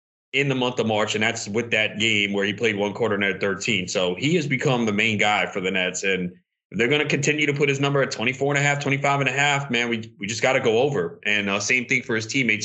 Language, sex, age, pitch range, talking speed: English, male, 30-49, 95-120 Hz, 290 wpm